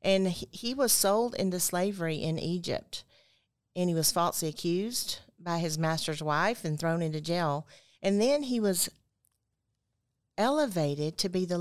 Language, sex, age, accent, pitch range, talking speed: English, female, 40-59, American, 160-200 Hz, 150 wpm